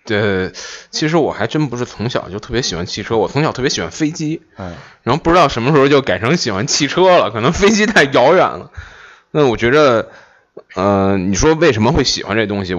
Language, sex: Chinese, male